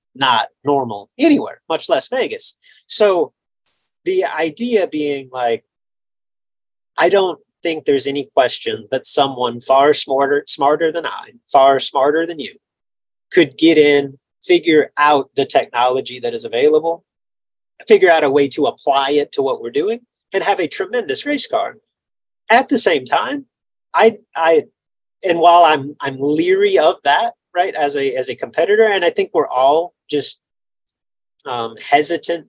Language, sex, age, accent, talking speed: English, male, 30-49, American, 150 wpm